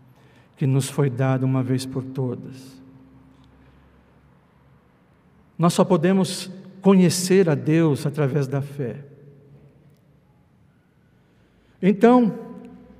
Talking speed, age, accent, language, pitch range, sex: 85 wpm, 60-79, Brazilian, Portuguese, 140-195 Hz, male